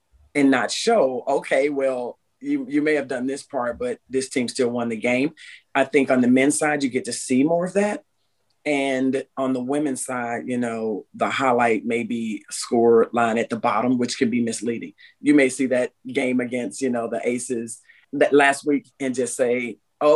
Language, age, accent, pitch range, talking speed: English, 40-59, American, 120-145 Hz, 205 wpm